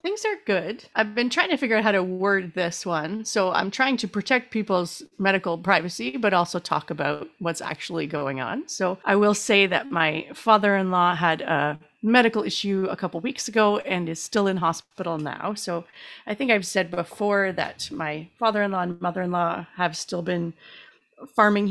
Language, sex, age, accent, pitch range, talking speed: English, female, 30-49, American, 165-210 Hz, 180 wpm